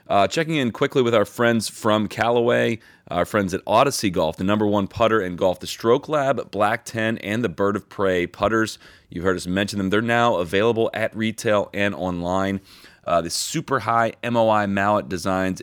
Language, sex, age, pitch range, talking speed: English, male, 30-49, 85-110 Hz, 190 wpm